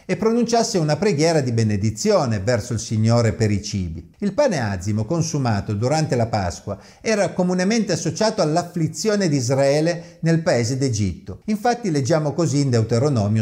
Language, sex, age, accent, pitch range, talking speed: Italian, male, 50-69, native, 110-170 Hz, 150 wpm